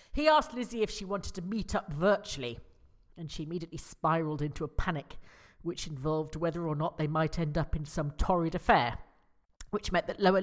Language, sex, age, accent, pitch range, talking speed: English, female, 40-59, British, 150-205 Hz, 195 wpm